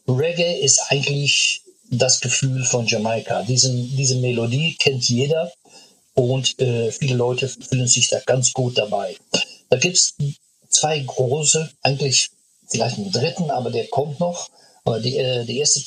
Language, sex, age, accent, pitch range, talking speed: German, male, 50-69, German, 120-135 Hz, 150 wpm